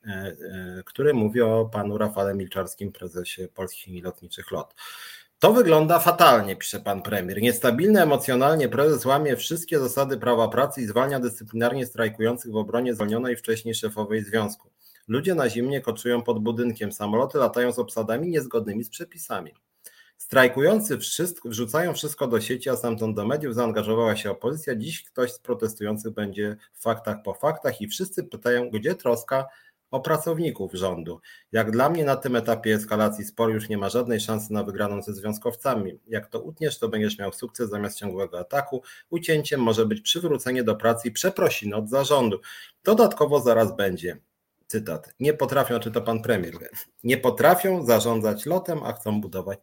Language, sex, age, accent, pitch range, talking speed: Polish, male, 30-49, native, 105-130 Hz, 160 wpm